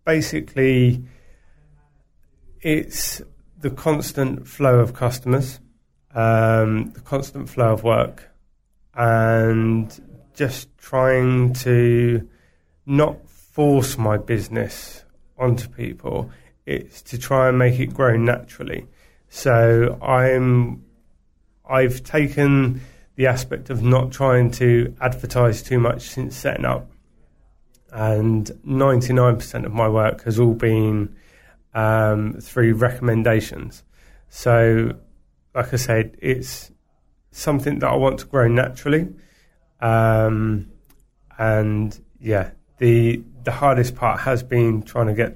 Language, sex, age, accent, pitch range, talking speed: English, male, 30-49, British, 110-130 Hz, 105 wpm